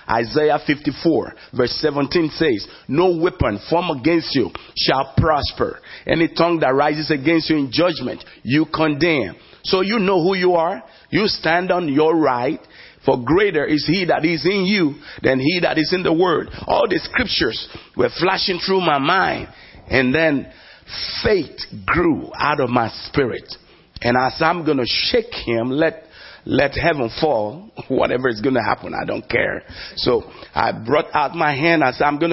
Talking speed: 175 wpm